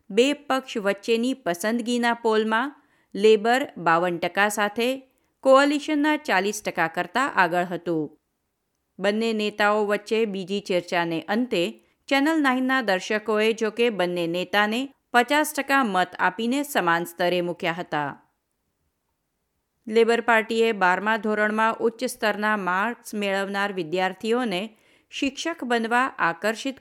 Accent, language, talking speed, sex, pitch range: native, Gujarati, 105 wpm, female, 180-240 Hz